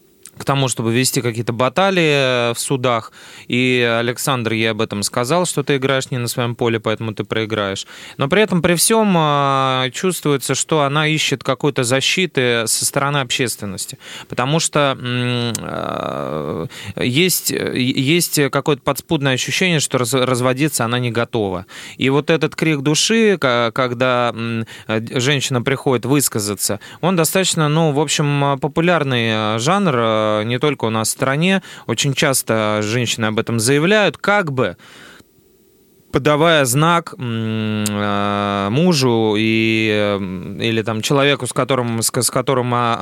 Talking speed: 125 wpm